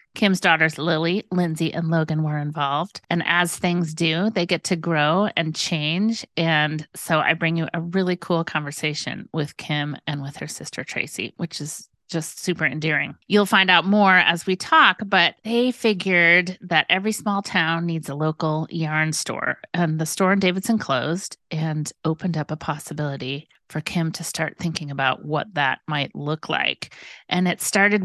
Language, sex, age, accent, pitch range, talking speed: English, female, 30-49, American, 150-185 Hz, 180 wpm